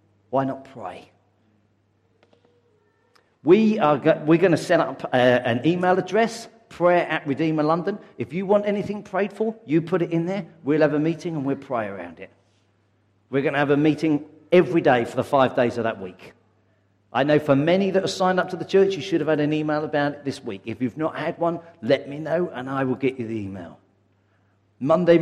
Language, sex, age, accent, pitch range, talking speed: English, male, 50-69, British, 105-165 Hz, 215 wpm